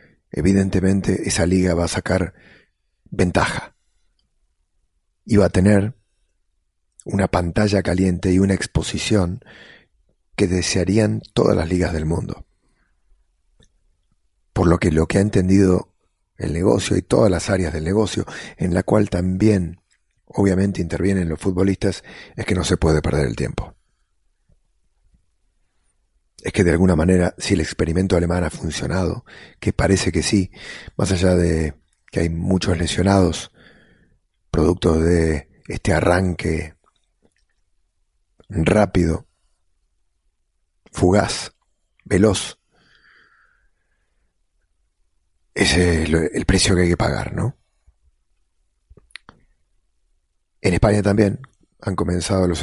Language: English